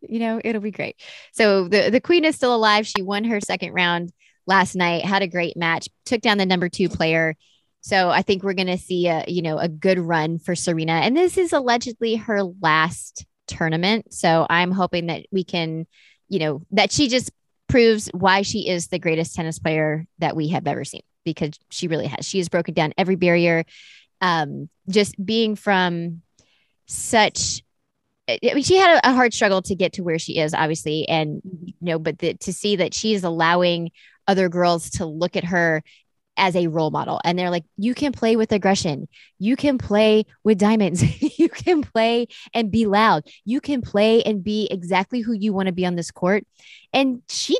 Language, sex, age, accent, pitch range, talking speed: English, female, 20-39, American, 170-225 Hz, 200 wpm